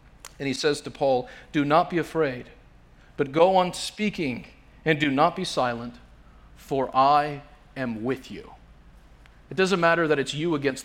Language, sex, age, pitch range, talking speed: English, male, 40-59, 120-165 Hz, 165 wpm